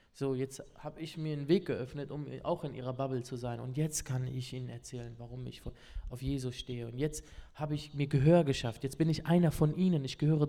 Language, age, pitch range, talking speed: German, 20-39, 125-155 Hz, 240 wpm